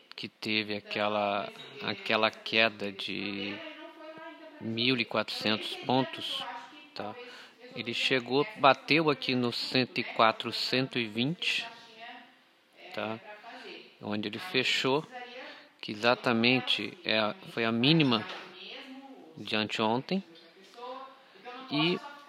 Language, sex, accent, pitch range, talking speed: Portuguese, male, Brazilian, 115-165 Hz, 75 wpm